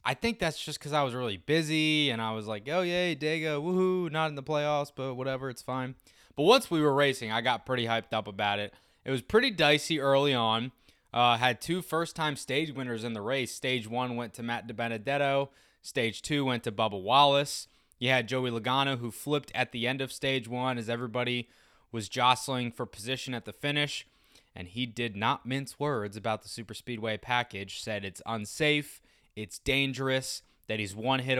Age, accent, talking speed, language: 20-39, American, 200 wpm, English